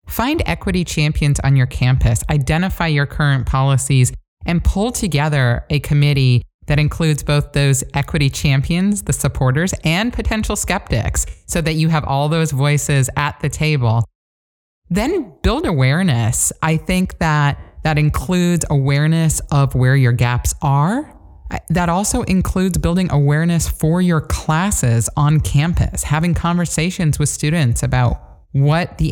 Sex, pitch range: male, 135-165 Hz